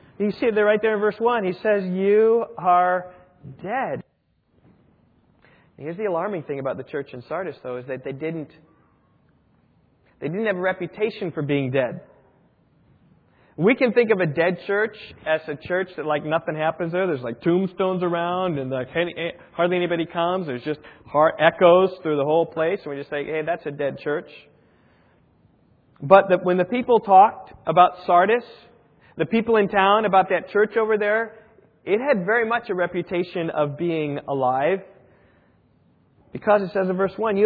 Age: 40-59